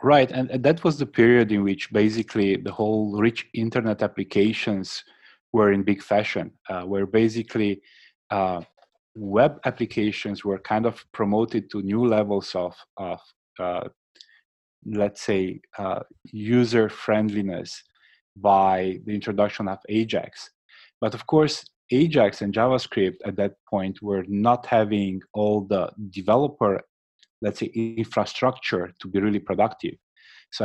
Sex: male